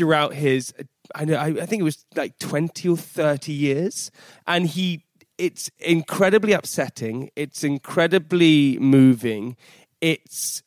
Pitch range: 140-180 Hz